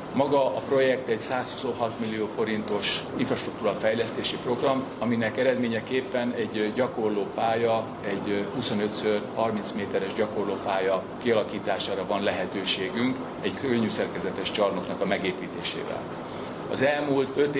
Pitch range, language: 110-130 Hz, Hungarian